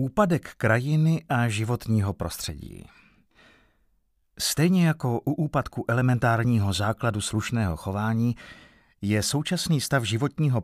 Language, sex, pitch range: Czech, male, 105-140 Hz